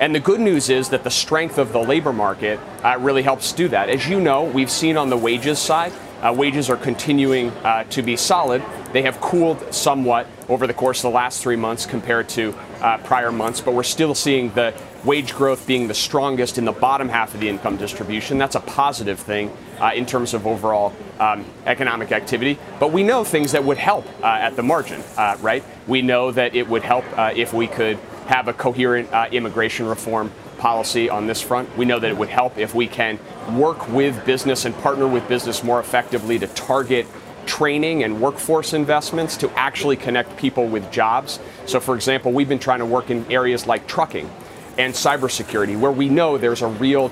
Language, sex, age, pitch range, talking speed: English, male, 30-49, 115-135 Hz, 210 wpm